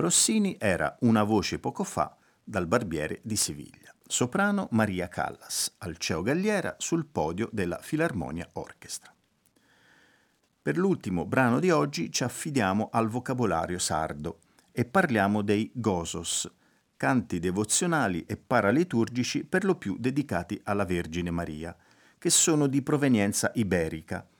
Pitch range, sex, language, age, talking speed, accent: 90-135 Hz, male, Italian, 50-69, 125 wpm, native